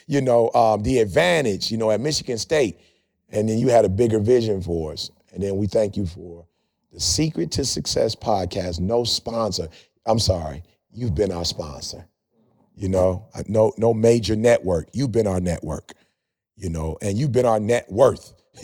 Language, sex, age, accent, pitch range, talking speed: English, male, 40-59, American, 100-135 Hz, 180 wpm